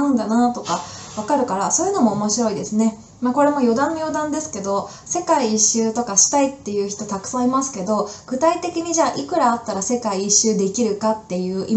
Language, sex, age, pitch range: Japanese, female, 20-39, 200-265 Hz